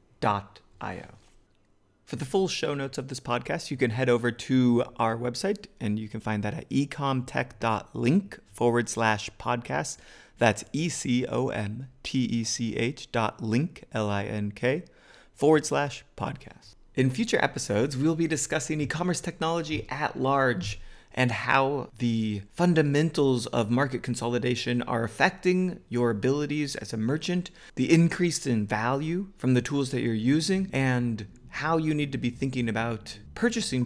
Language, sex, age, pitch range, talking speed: English, male, 30-49, 115-140 Hz, 135 wpm